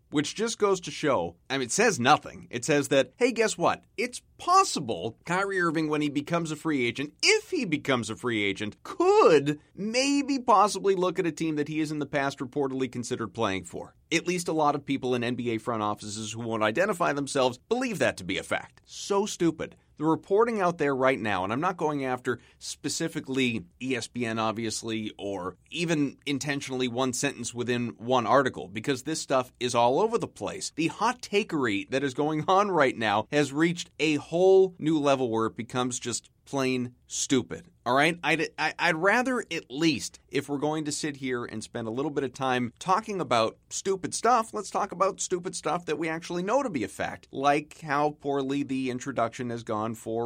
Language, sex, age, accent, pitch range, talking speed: English, male, 30-49, American, 120-170 Hz, 200 wpm